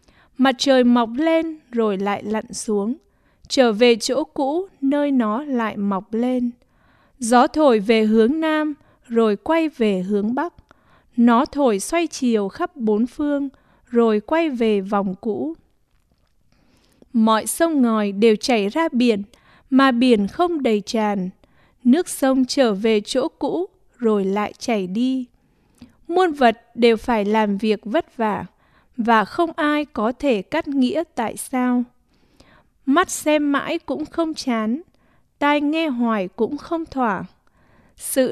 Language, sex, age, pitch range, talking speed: English, female, 20-39, 220-290 Hz, 140 wpm